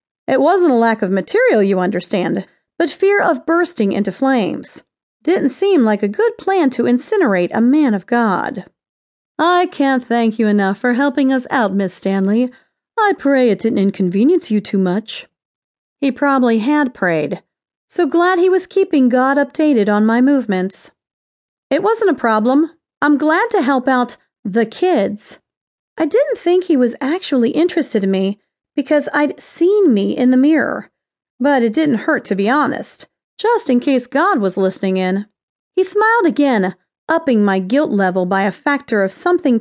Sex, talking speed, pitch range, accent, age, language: female, 170 wpm, 220-320 Hz, American, 40-59, English